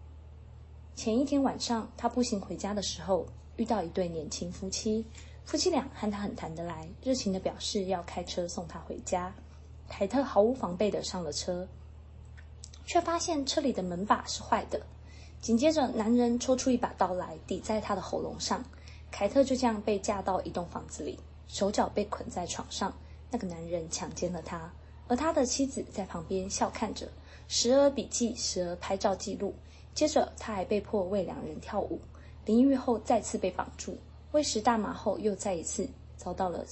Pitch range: 180-250 Hz